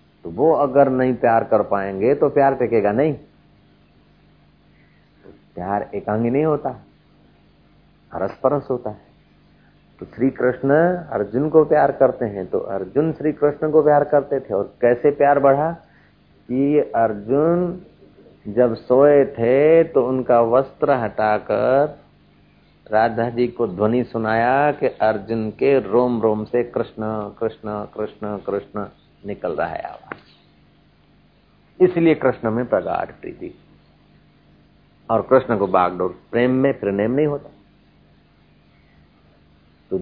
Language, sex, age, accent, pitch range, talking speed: Hindi, male, 50-69, native, 105-140 Hz, 120 wpm